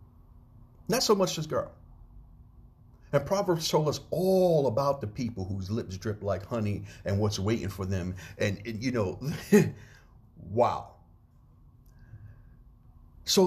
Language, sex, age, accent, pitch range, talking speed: English, male, 50-69, American, 95-125 Hz, 130 wpm